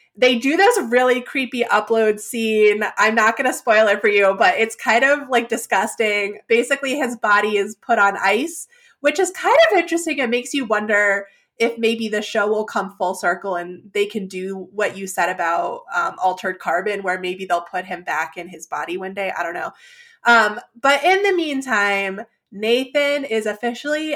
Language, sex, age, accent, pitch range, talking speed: English, female, 20-39, American, 200-245 Hz, 195 wpm